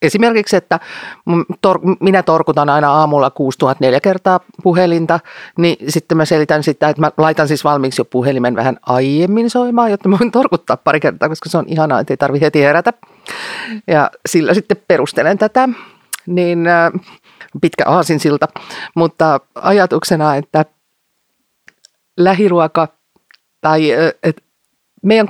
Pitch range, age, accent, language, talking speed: 155-205 Hz, 40-59, native, Finnish, 130 wpm